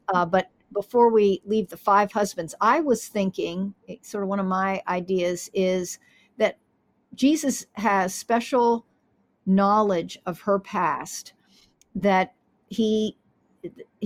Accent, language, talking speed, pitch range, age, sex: American, English, 120 wpm, 200-255 Hz, 50-69, female